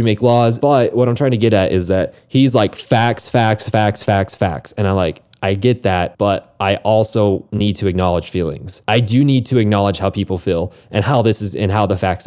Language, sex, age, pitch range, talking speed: English, male, 20-39, 95-120 Hz, 230 wpm